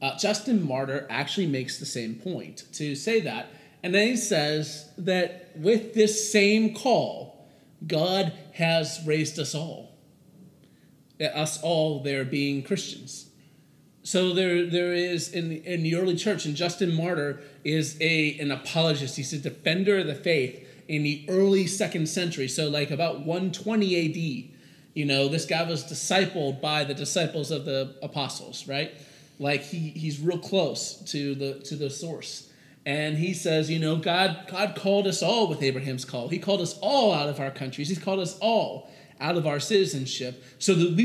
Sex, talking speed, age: male, 175 wpm, 30-49